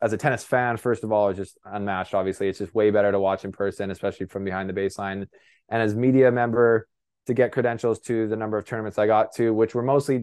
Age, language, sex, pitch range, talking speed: 20-39, English, male, 100-115 Hz, 245 wpm